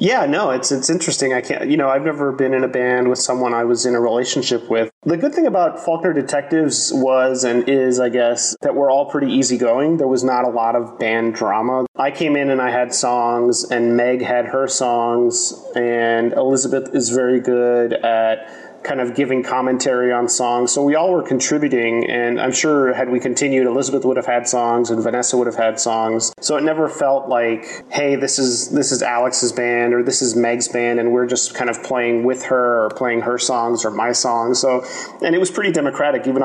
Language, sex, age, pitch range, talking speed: English, male, 30-49, 120-135 Hz, 215 wpm